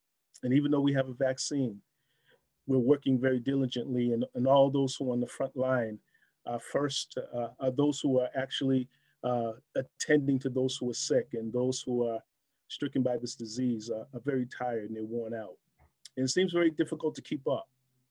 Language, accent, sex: English, American, male